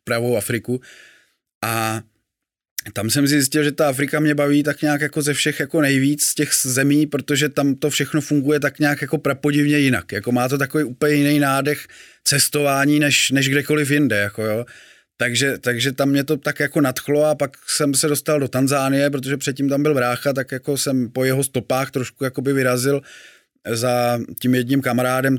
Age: 20-39